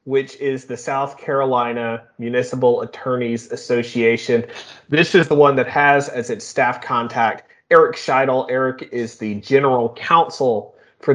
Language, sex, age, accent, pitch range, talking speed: English, male, 30-49, American, 120-145 Hz, 140 wpm